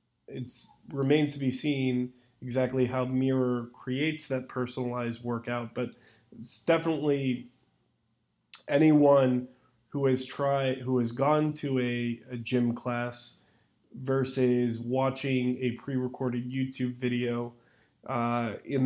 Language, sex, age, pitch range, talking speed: English, male, 20-39, 120-130 Hz, 110 wpm